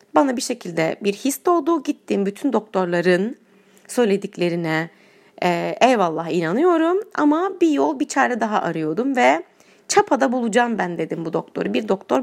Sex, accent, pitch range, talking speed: female, native, 190-300 Hz, 135 wpm